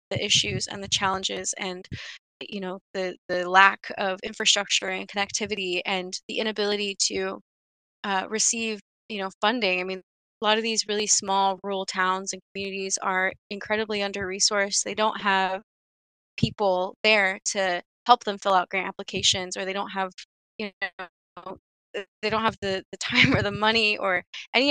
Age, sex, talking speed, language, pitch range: 20-39, female, 165 wpm, English, 190-215 Hz